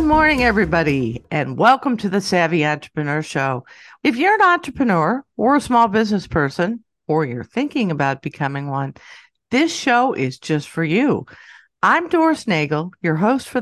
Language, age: English, 50-69